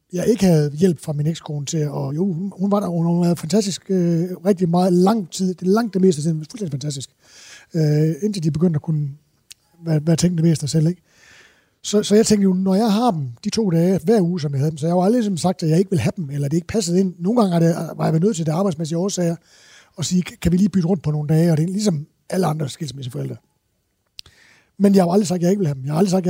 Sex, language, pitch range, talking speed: male, Danish, 155-195 Hz, 290 wpm